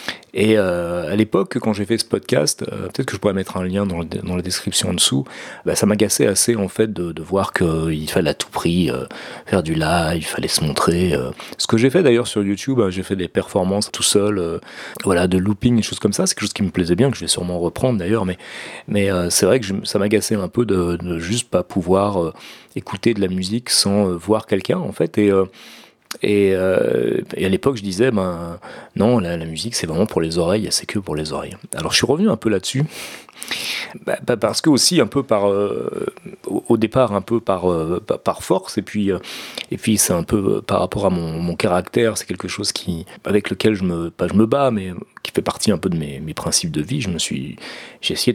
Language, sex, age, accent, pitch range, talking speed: French, male, 30-49, French, 90-110 Hz, 250 wpm